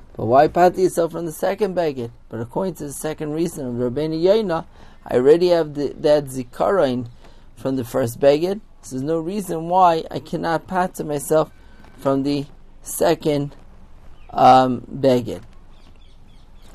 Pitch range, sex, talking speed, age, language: 125-165 Hz, male, 150 wpm, 30-49, English